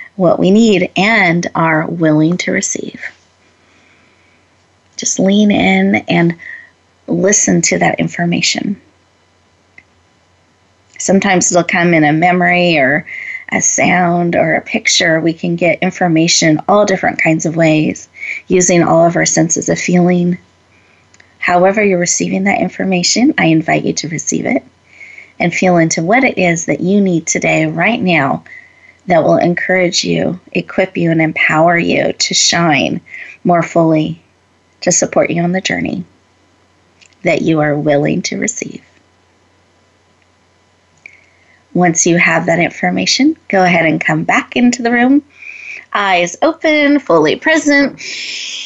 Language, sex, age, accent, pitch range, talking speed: English, female, 30-49, American, 135-195 Hz, 135 wpm